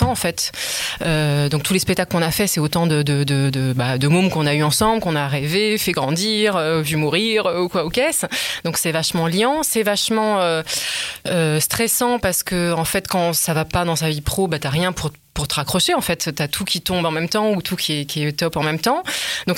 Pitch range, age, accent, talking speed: 155-195 Hz, 20-39, French, 260 wpm